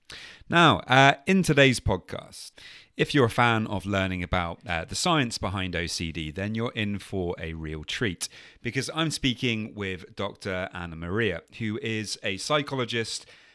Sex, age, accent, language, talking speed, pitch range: male, 30-49, British, English, 155 wpm, 90-110 Hz